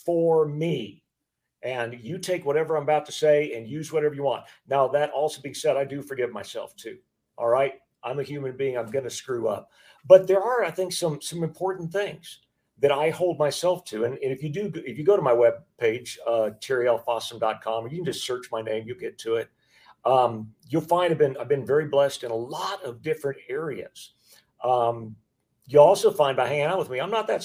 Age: 50-69